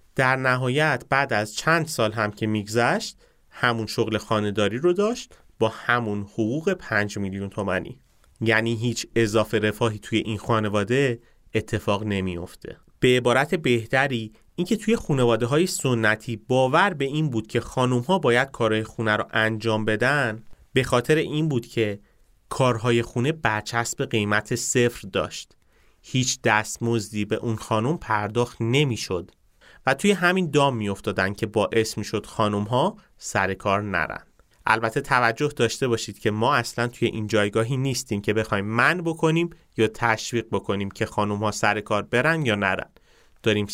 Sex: male